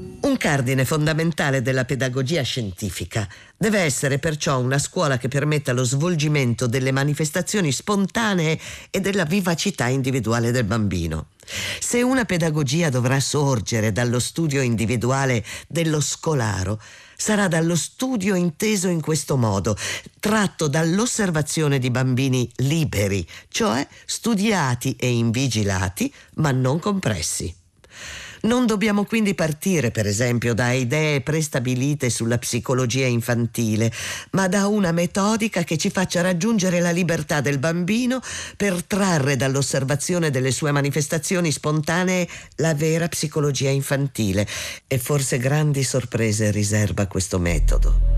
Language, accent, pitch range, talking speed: Italian, native, 120-175 Hz, 120 wpm